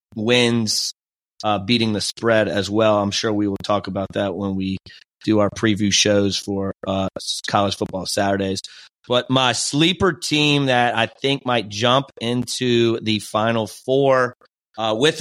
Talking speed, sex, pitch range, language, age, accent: 160 wpm, male, 100-120 Hz, English, 30-49, American